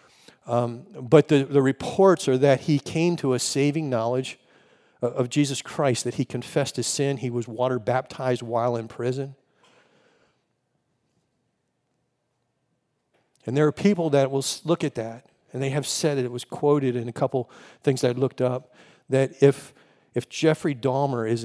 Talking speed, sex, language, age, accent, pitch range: 165 wpm, male, English, 50-69, American, 125-155 Hz